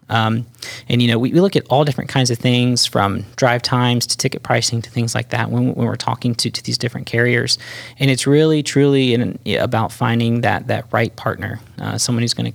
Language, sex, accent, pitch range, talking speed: English, male, American, 115-130 Hz, 240 wpm